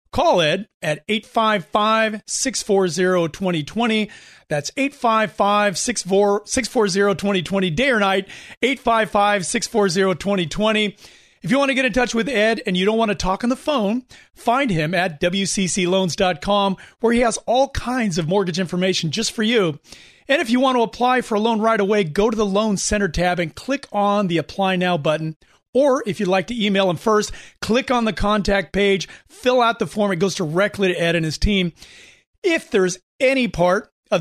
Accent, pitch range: American, 185-220 Hz